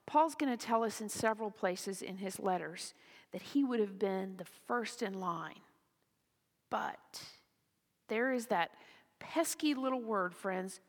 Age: 50-69